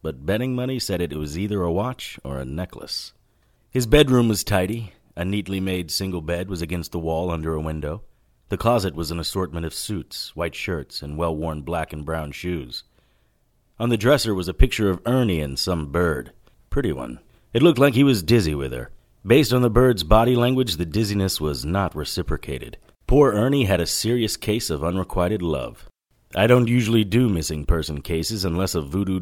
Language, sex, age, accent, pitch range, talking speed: English, male, 30-49, American, 80-115 Hz, 195 wpm